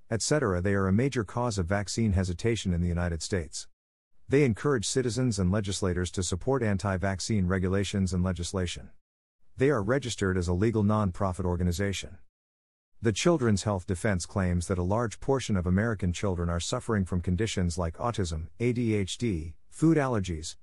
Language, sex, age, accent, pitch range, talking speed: English, male, 50-69, American, 90-115 Hz, 155 wpm